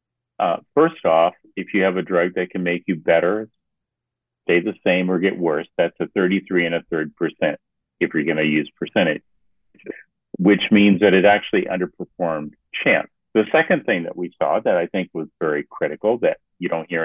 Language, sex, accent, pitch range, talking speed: English, male, American, 85-110 Hz, 195 wpm